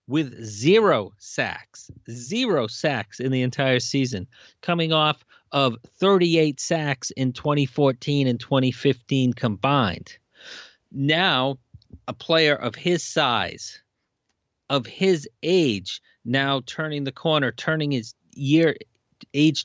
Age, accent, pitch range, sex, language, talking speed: 40-59, American, 125-155 Hz, male, English, 110 wpm